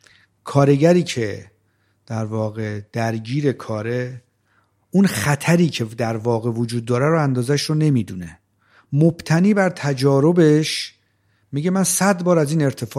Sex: male